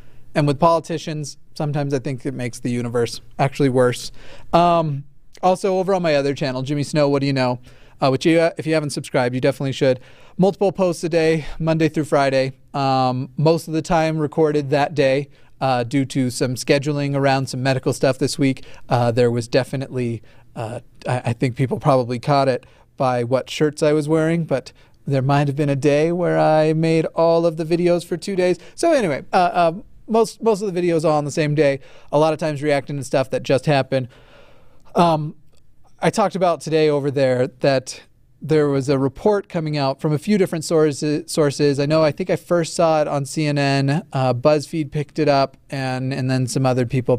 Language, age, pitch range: English, 30-49, 130-160 Hz